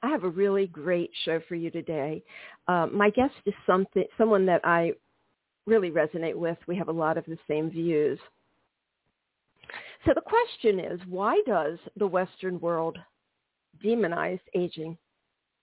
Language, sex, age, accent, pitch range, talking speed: English, female, 50-69, American, 170-225 Hz, 150 wpm